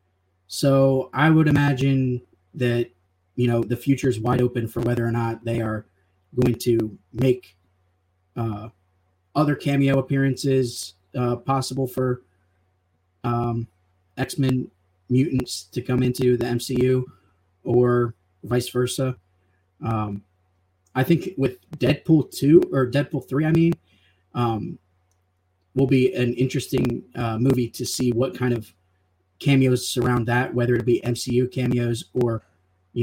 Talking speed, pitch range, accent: 130 wpm, 95-130 Hz, American